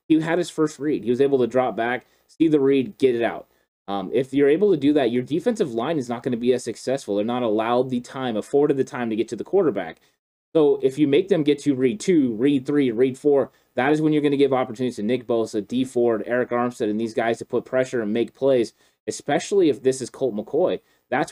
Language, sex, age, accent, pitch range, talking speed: English, male, 30-49, American, 120-150 Hz, 255 wpm